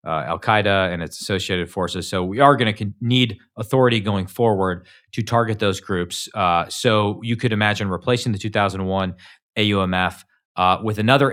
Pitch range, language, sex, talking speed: 100-125 Hz, English, male, 175 wpm